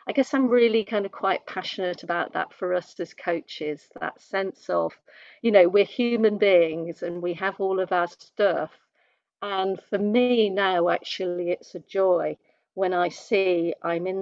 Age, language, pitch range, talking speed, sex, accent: 50-69, English, 175-210 Hz, 175 wpm, female, British